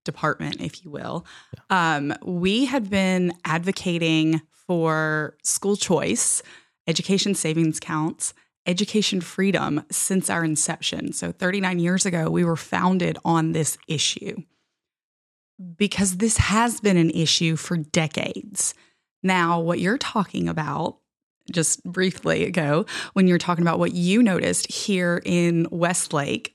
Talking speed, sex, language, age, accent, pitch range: 125 wpm, female, English, 20-39, American, 165-210 Hz